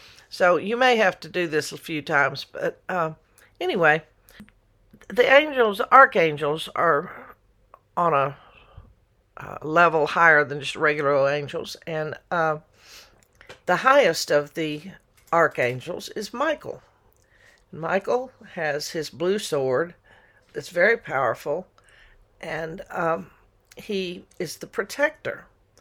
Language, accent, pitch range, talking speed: English, American, 145-195 Hz, 115 wpm